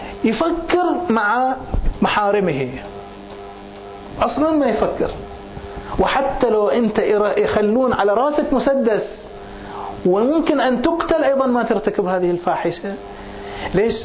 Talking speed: 95 wpm